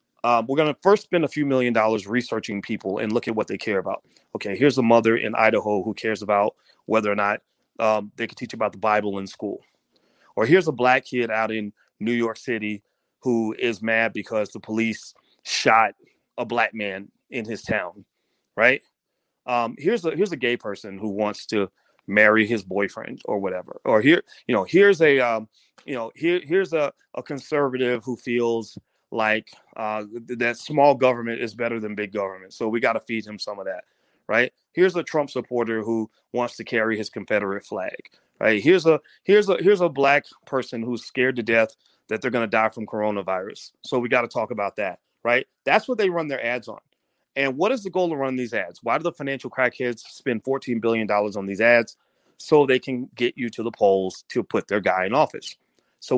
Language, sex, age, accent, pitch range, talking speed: English, male, 30-49, American, 110-135 Hz, 210 wpm